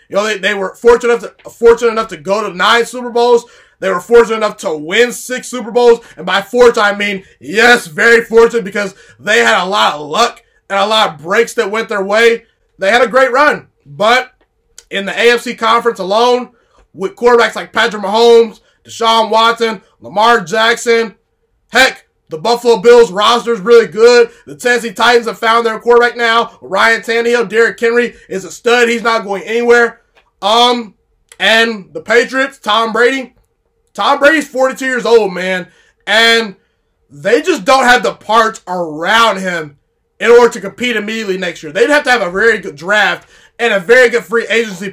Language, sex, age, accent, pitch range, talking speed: English, male, 20-39, American, 205-240 Hz, 180 wpm